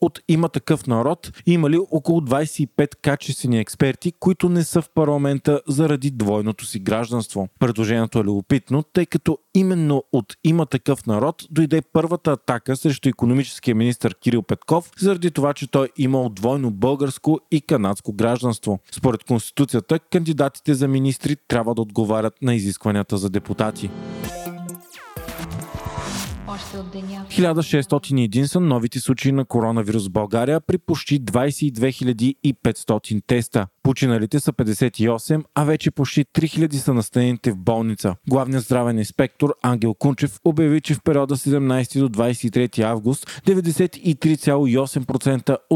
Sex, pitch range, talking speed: male, 115-155 Hz, 125 wpm